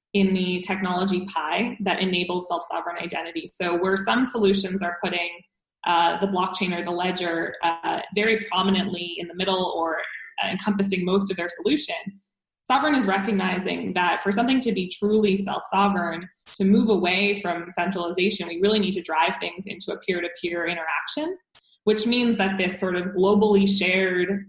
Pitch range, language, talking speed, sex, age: 175-200 Hz, English, 160 wpm, female, 20-39